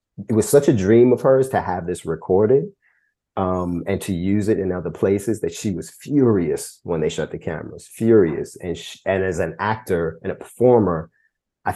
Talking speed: 200 wpm